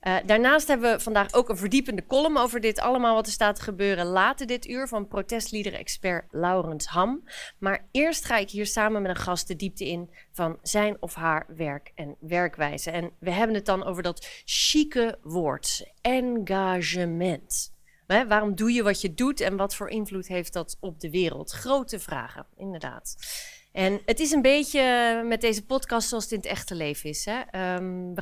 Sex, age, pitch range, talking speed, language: female, 30-49, 180-230 Hz, 190 wpm, Dutch